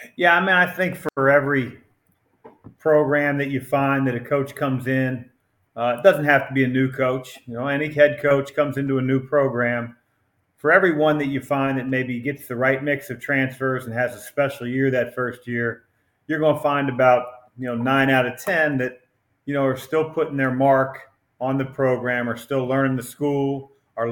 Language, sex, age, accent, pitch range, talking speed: English, male, 40-59, American, 125-145 Hz, 210 wpm